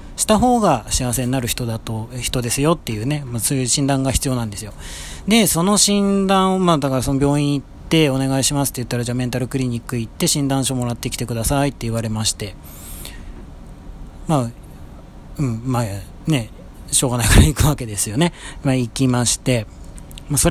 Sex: male